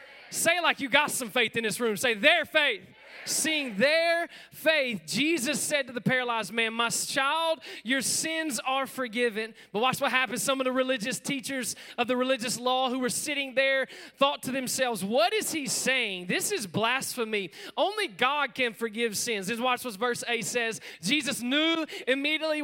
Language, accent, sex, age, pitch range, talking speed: English, American, male, 20-39, 235-295 Hz, 180 wpm